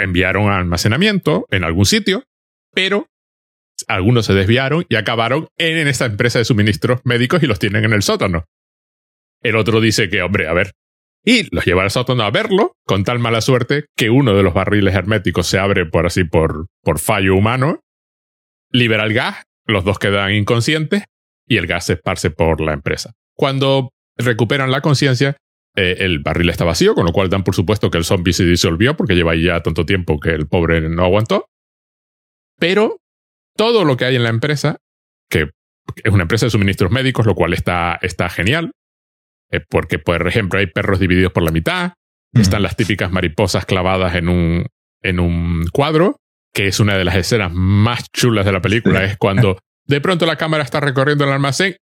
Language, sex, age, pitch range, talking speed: Spanish, male, 30-49, 90-125 Hz, 185 wpm